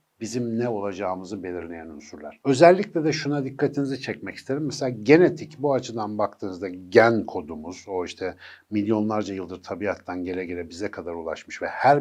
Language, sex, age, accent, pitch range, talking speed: Turkish, male, 60-79, native, 110-155 Hz, 150 wpm